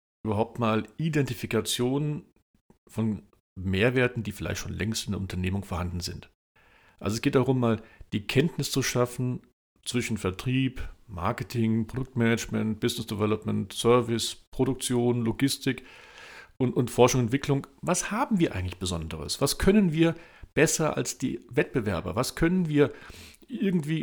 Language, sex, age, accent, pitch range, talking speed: German, male, 50-69, German, 105-135 Hz, 130 wpm